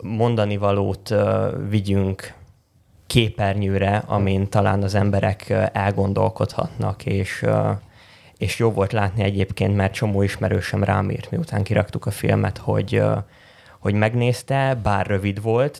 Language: Hungarian